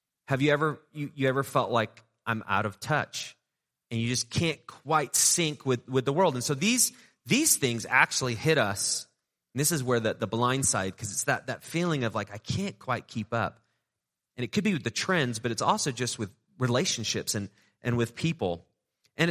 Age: 30-49